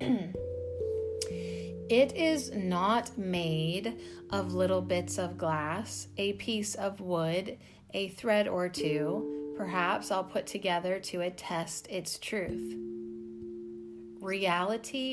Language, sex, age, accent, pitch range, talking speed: English, female, 30-49, American, 135-195 Hz, 105 wpm